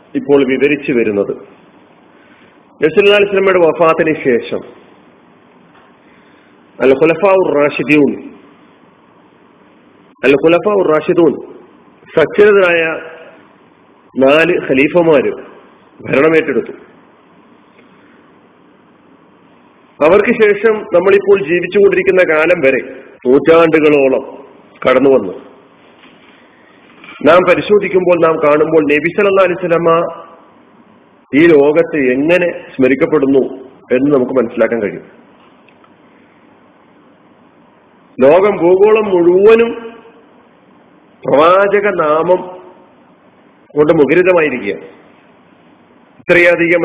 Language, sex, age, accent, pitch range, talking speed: Malayalam, male, 40-59, native, 145-190 Hz, 55 wpm